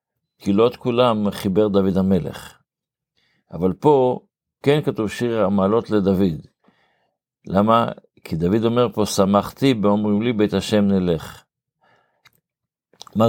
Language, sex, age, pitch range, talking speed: Hebrew, male, 50-69, 95-110 Hz, 115 wpm